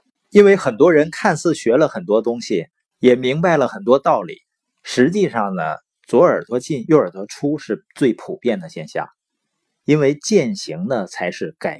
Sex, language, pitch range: male, Chinese, 125-175 Hz